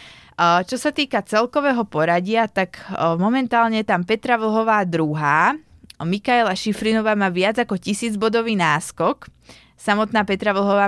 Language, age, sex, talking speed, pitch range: Slovak, 20-39, female, 120 wpm, 175-205 Hz